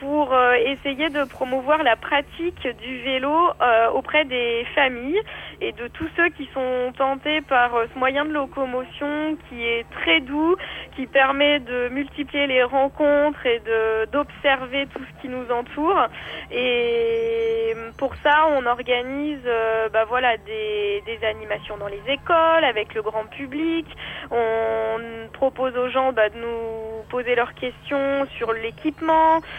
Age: 20-39